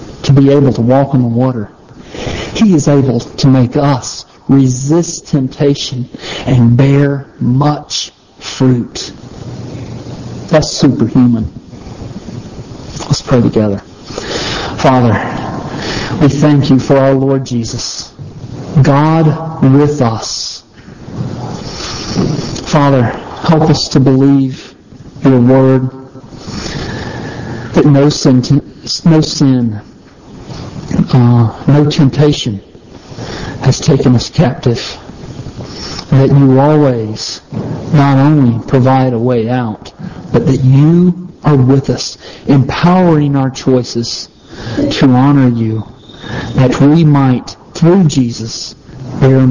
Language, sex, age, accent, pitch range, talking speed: English, male, 50-69, American, 120-140 Hz, 100 wpm